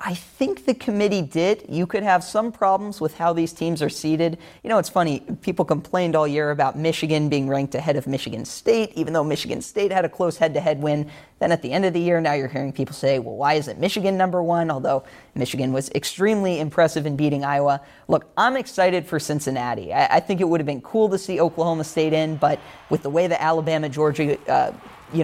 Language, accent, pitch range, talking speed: English, American, 145-175 Hz, 220 wpm